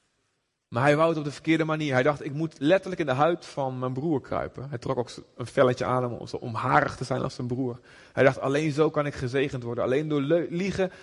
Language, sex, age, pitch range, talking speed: Dutch, male, 30-49, 120-170 Hz, 240 wpm